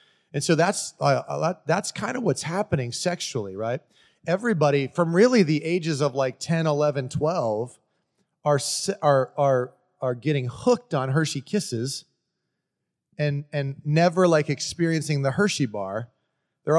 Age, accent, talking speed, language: 30-49, American, 145 wpm, English